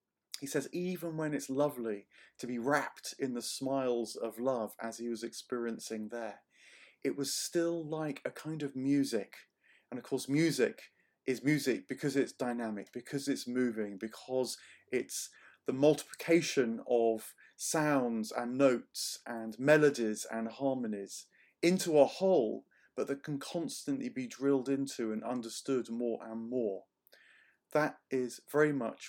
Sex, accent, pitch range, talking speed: male, British, 115-145 Hz, 145 wpm